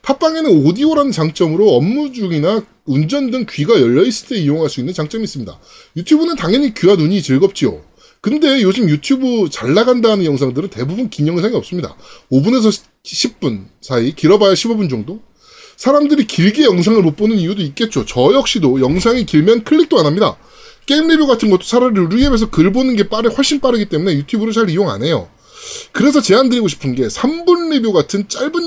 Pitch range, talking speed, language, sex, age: 170-275 Hz, 165 wpm, English, male, 20-39